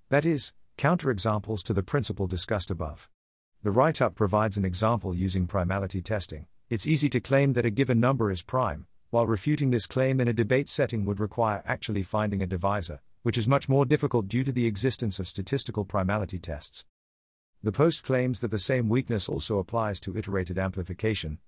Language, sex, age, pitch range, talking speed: English, male, 50-69, 95-125 Hz, 180 wpm